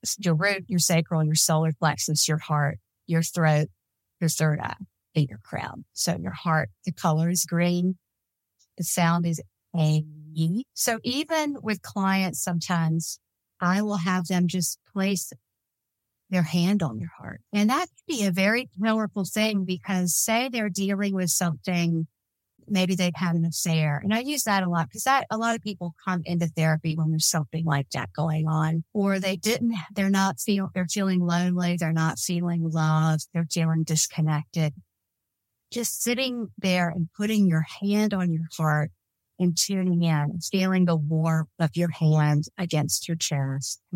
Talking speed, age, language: 170 wpm, 50-69, English